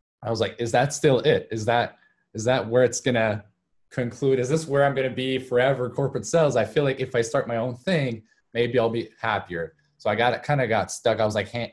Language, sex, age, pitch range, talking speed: English, male, 20-39, 100-130 Hz, 250 wpm